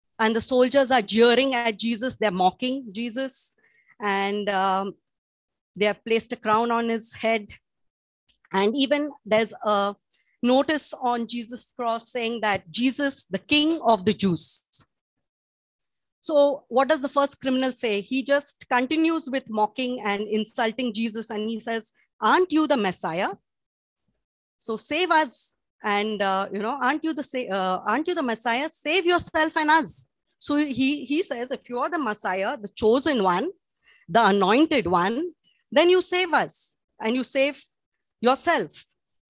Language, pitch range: English, 210-285 Hz